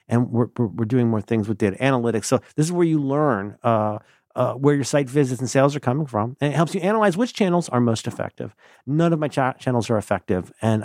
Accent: American